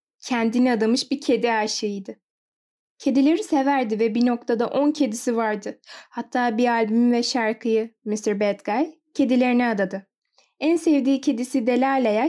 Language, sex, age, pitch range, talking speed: Turkish, female, 10-29, 230-285 Hz, 130 wpm